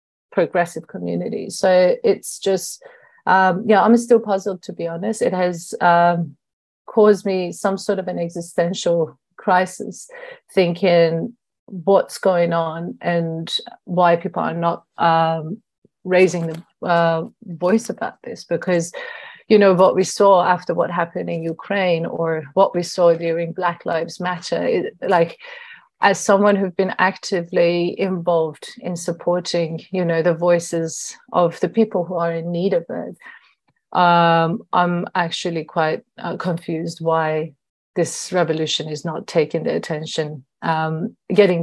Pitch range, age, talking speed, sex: 165-190 Hz, 30-49, 140 wpm, female